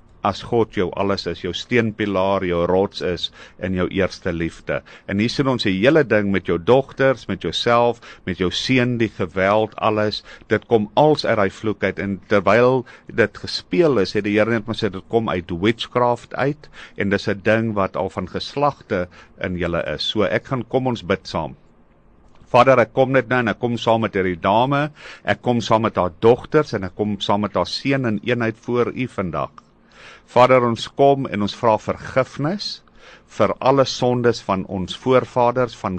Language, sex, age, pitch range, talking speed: English, male, 50-69, 95-125 Hz, 195 wpm